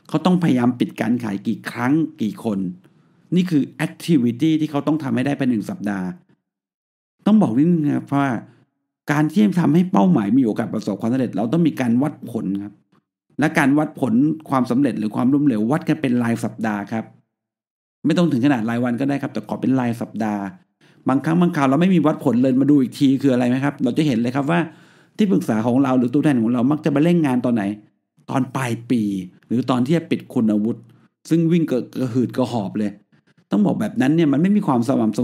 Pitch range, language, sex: 120-160 Hz, Thai, male